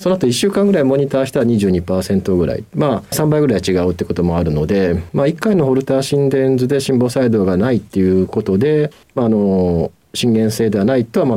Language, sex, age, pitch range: Japanese, male, 40-59, 100-140 Hz